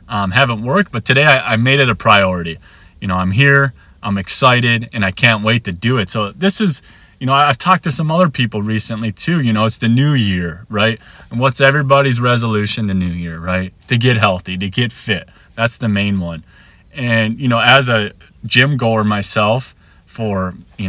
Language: English